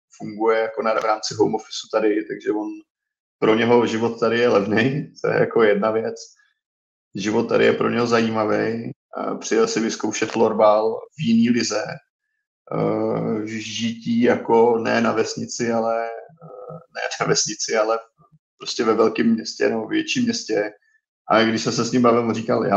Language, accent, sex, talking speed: Czech, native, male, 155 wpm